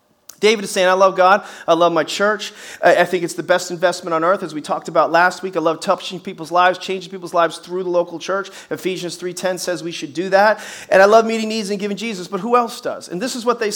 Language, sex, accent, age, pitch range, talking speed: English, male, American, 40-59, 185-225 Hz, 260 wpm